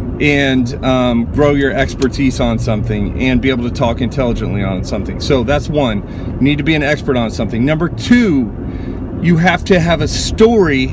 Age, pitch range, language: 40-59, 120-150 Hz, English